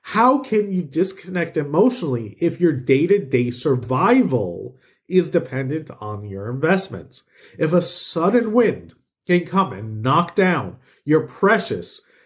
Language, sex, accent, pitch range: English, male, American, 135-195 Hz